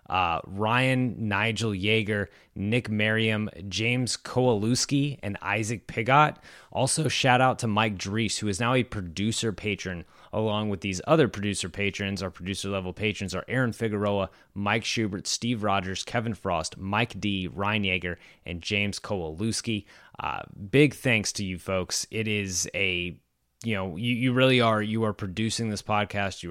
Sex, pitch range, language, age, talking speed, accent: male, 95-120 Hz, English, 20-39, 160 wpm, American